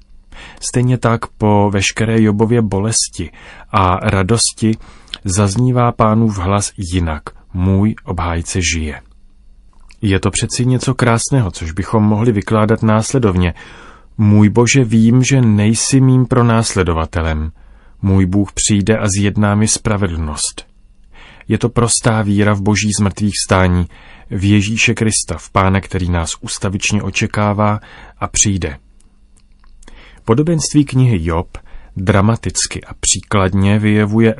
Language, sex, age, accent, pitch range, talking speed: Czech, male, 30-49, native, 95-110 Hz, 115 wpm